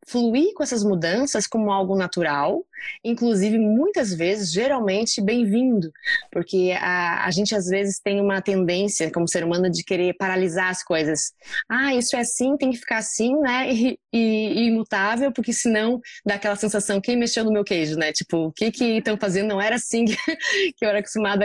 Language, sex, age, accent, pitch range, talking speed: Portuguese, female, 20-39, Brazilian, 185-235 Hz, 185 wpm